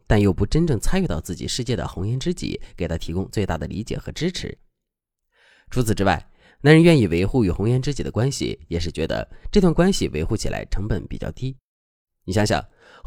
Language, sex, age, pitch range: Chinese, male, 30-49, 90-150 Hz